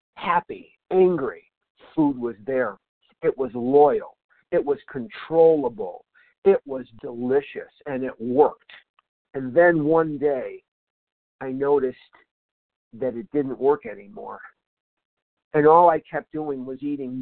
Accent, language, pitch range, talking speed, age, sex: American, English, 135-205 Hz, 120 wpm, 50-69, male